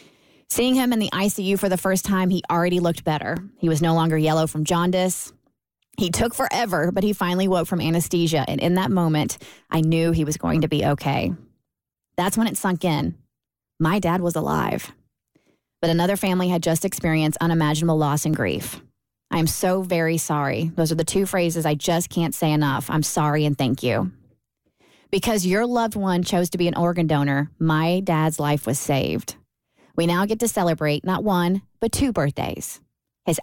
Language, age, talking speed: English, 20-39, 190 wpm